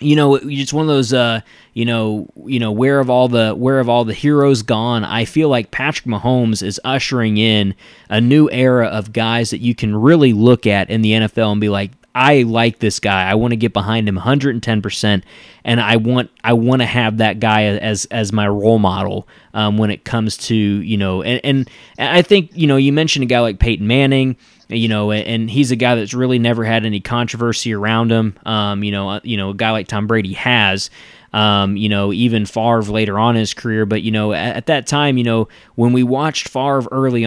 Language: English